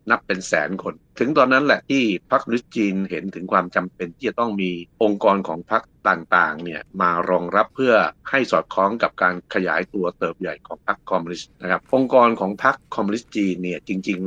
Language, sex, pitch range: Thai, male, 90-110 Hz